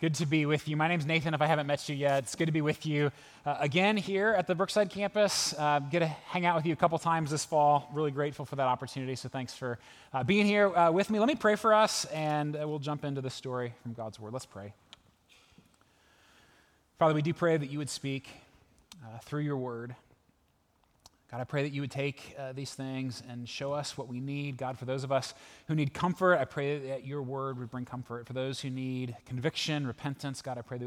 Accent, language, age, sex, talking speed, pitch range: American, English, 20-39, male, 240 wpm, 120-155 Hz